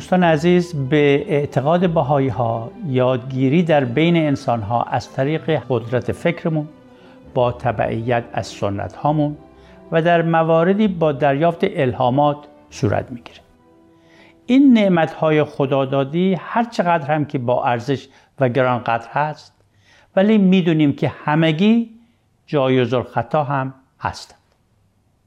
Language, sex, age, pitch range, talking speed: Persian, male, 60-79, 120-165 Hz, 110 wpm